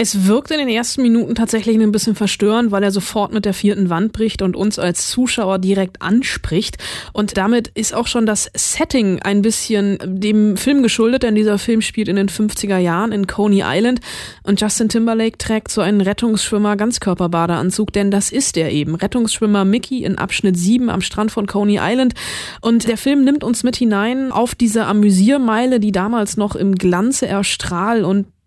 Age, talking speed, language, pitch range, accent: 20-39, 180 wpm, German, 195-225 Hz, German